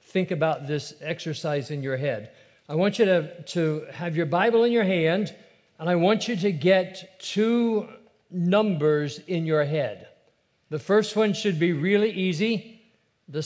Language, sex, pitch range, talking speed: English, male, 150-190 Hz, 165 wpm